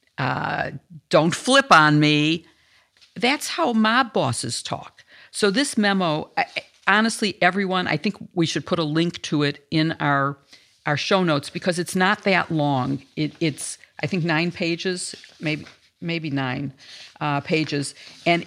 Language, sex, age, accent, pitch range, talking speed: English, female, 50-69, American, 145-185 Hz, 155 wpm